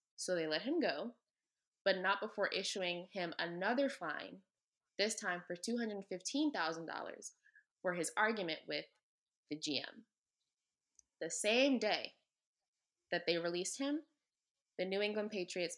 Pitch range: 175-215 Hz